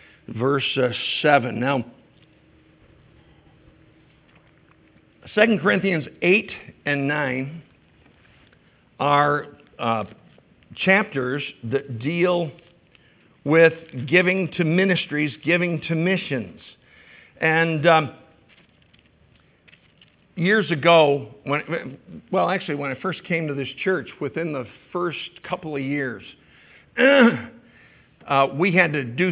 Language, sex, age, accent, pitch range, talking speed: English, male, 50-69, American, 130-160 Hz, 95 wpm